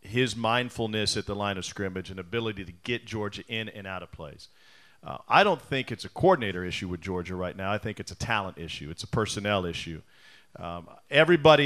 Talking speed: 210 wpm